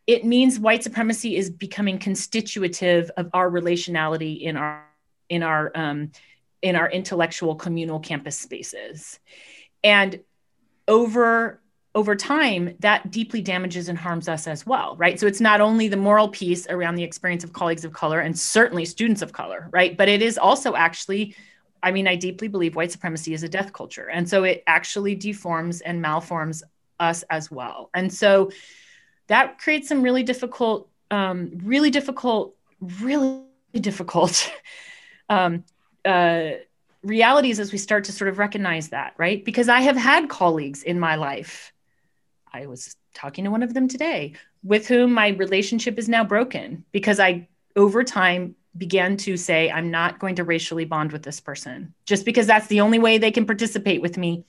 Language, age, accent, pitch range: English, 30-49, American, 170-220 Hz